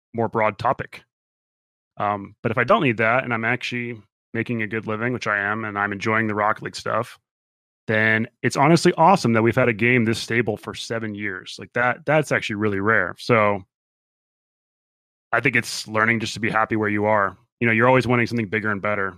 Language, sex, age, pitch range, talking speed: English, male, 20-39, 110-140 Hz, 215 wpm